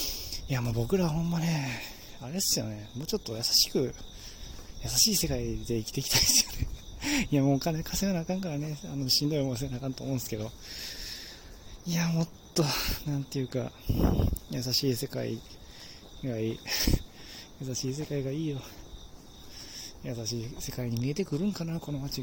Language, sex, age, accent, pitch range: Japanese, male, 20-39, native, 105-135 Hz